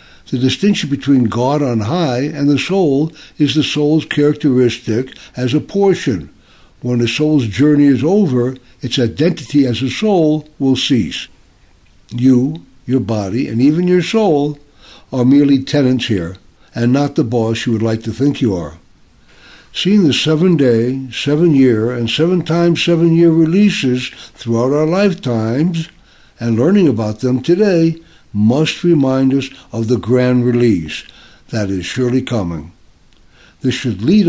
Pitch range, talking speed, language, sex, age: 115-150 Hz, 145 wpm, English, male, 60-79